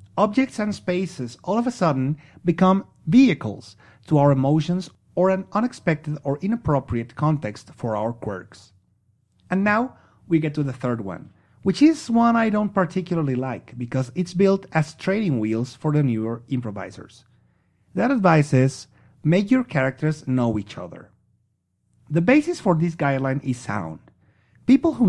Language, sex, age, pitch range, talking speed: English, male, 40-59, 125-190 Hz, 155 wpm